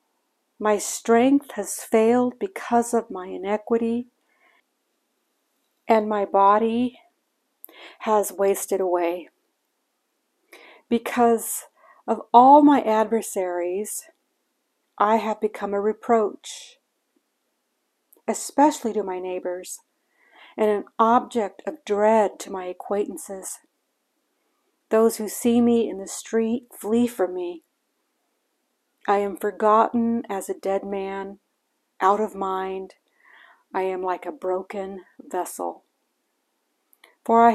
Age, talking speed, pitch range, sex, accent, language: 60-79, 100 wpm, 190-240 Hz, female, American, English